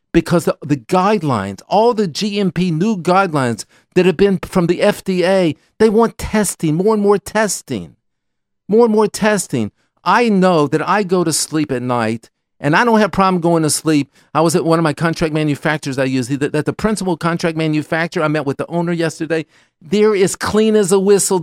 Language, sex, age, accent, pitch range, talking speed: English, male, 50-69, American, 150-190 Hz, 205 wpm